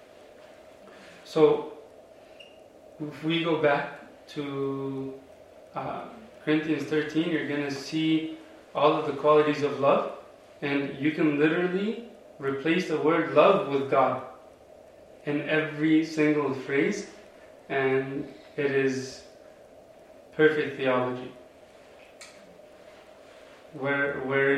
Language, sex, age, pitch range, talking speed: English, male, 20-39, 140-175 Hz, 95 wpm